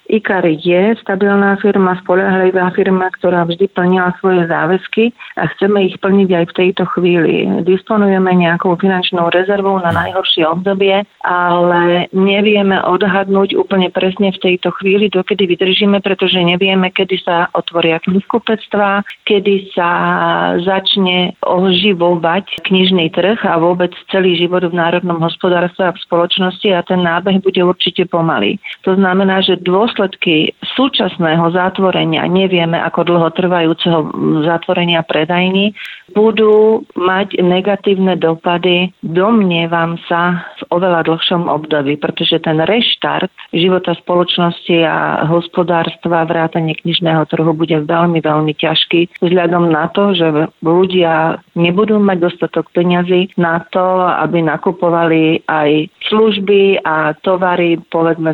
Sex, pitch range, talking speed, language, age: female, 170-195 Hz, 120 wpm, Slovak, 40-59